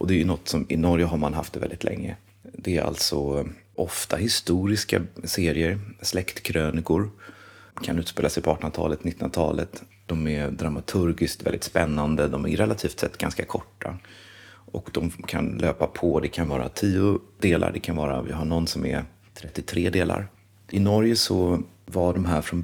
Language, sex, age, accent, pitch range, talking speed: Swedish, male, 30-49, native, 80-100 Hz, 170 wpm